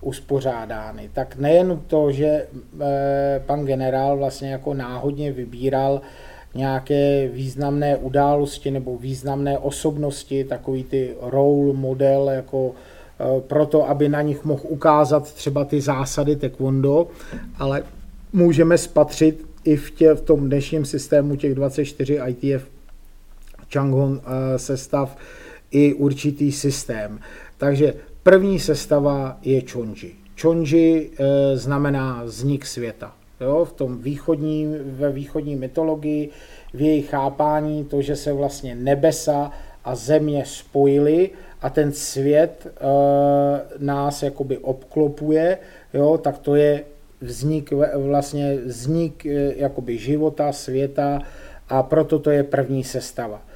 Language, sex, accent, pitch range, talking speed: Czech, male, native, 135-150 Hz, 110 wpm